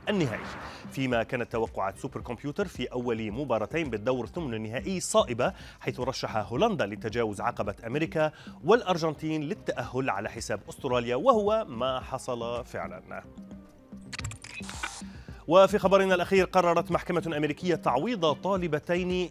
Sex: male